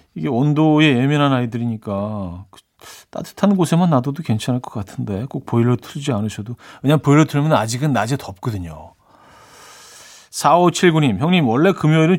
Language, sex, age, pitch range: Korean, male, 40-59, 120-165 Hz